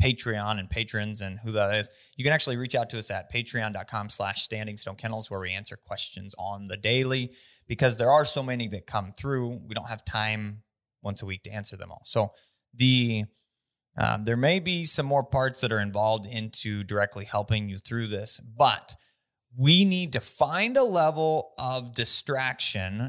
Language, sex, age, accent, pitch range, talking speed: English, male, 20-39, American, 110-140 Hz, 185 wpm